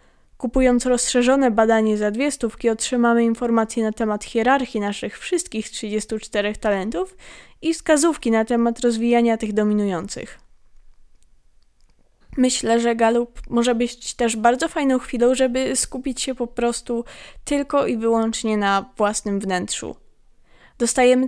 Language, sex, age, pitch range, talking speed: Polish, female, 20-39, 220-255 Hz, 120 wpm